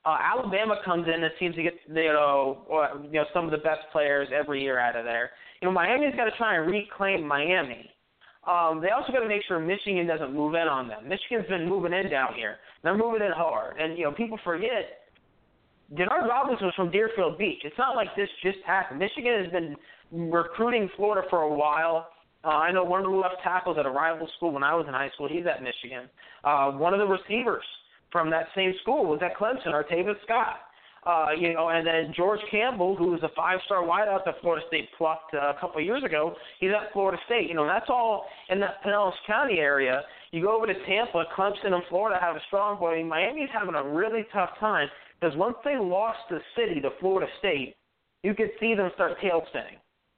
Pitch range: 160-205 Hz